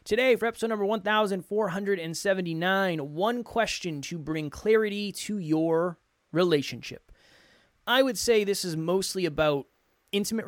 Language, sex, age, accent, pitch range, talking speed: English, male, 20-39, American, 145-200 Hz, 120 wpm